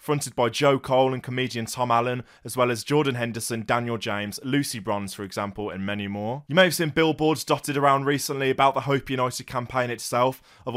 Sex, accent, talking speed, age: male, British, 205 wpm, 20-39